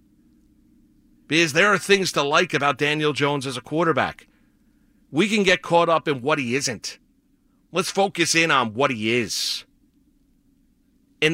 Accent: American